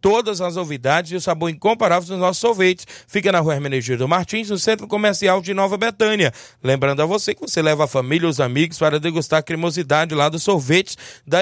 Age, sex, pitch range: 20-39, male, 165-200 Hz